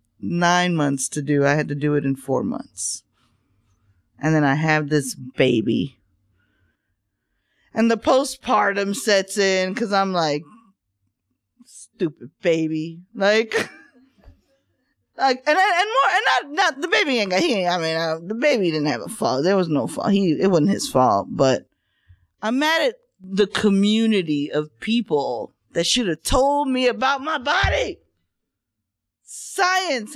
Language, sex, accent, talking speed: English, female, American, 155 wpm